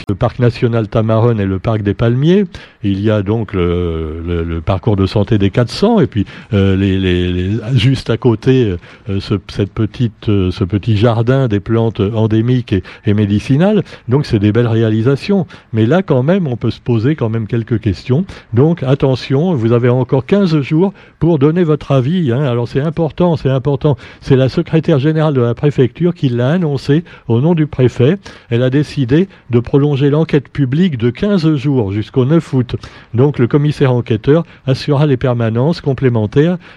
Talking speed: 185 wpm